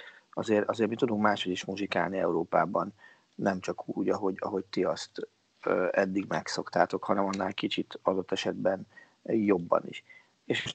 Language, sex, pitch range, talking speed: Hungarian, male, 95-110 Hz, 140 wpm